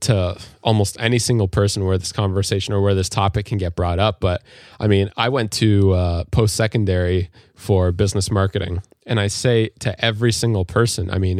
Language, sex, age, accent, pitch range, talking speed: English, male, 20-39, American, 95-115 Hz, 195 wpm